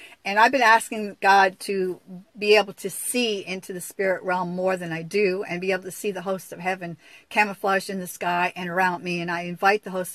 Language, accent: English, American